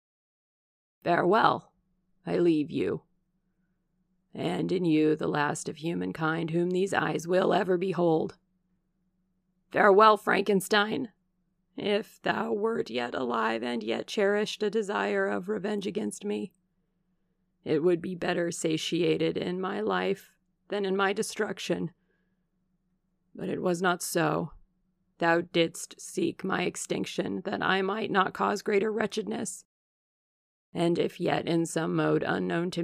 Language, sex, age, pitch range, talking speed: English, female, 40-59, 170-190 Hz, 130 wpm